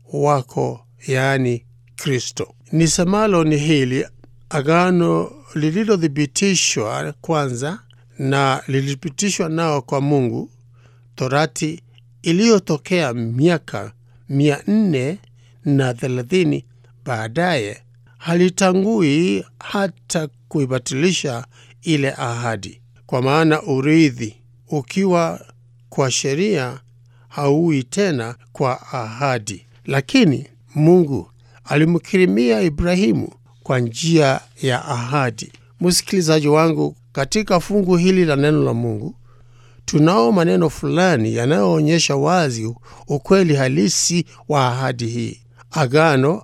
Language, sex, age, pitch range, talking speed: English, male, 60-79, 120-165 Hz, 80 wpm